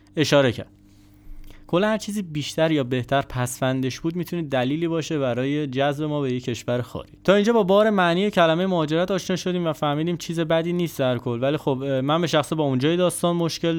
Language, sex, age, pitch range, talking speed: Persian, male, 20-39, 120-170 Hz, 190 wpm